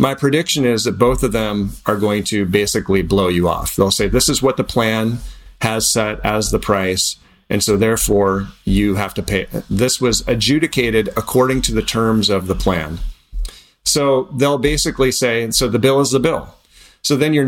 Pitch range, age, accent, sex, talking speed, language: 100-135 Hz, 40-59, American, male, 195 wpm, English